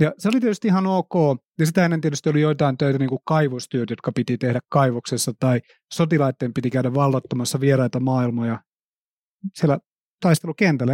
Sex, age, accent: male, 30-49, native